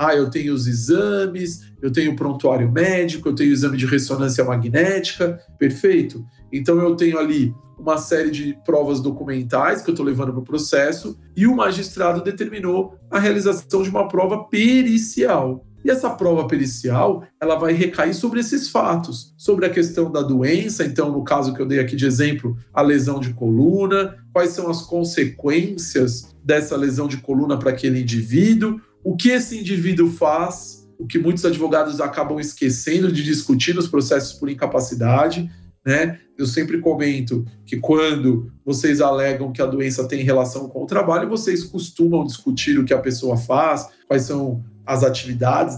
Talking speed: 170 wpm